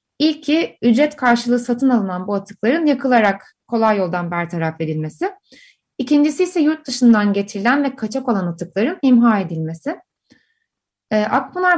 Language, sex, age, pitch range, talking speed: Turkish, female, 30-49, 210-285 Hz, 125 wpm